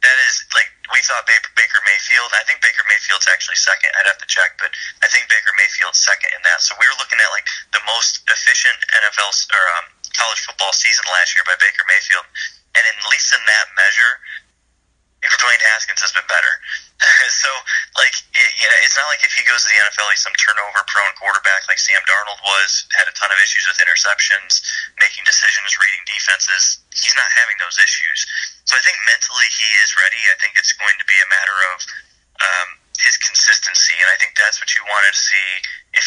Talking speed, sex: 200 wpm, male